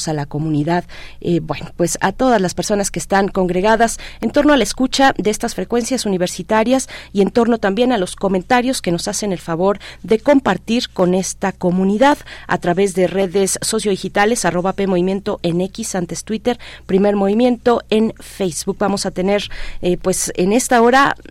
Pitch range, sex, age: 180-215 Hz, female, 40-59